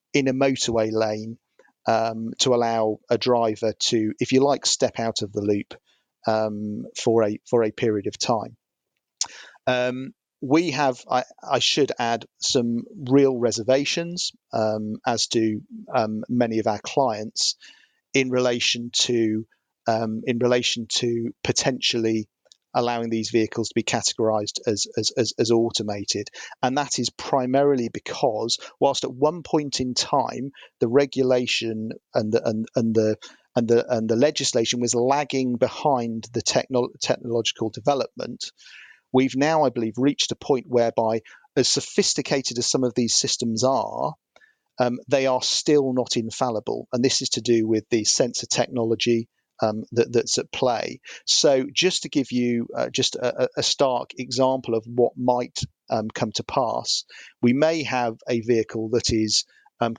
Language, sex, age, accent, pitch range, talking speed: English, male, 40-59, British, 115-130 Hz, 155 wpm